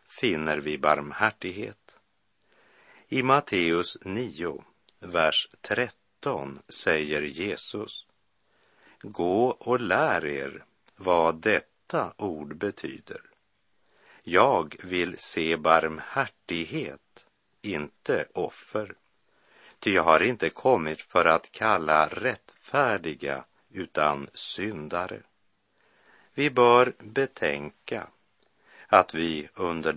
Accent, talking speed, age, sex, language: native, 80 wpm, 60-79, male, Swedish